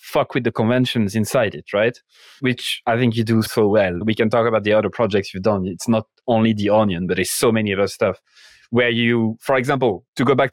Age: 30-49